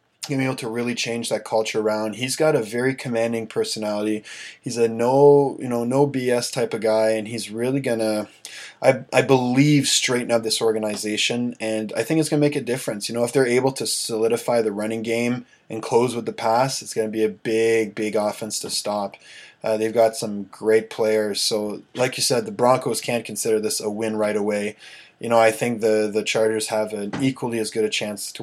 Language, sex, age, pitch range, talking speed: English, male, 20-39, 110-120 Hz, 215 wpm